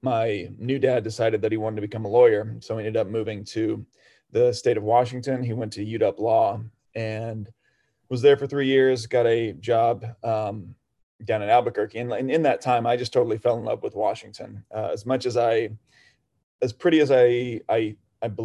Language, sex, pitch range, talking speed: English, male, 110-125 Hz, 195 wpm